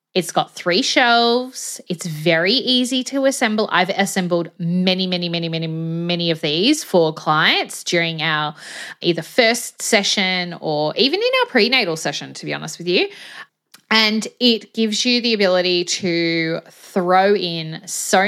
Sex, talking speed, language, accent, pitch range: female, 150 wpm, English, Australian, 170-235 Hz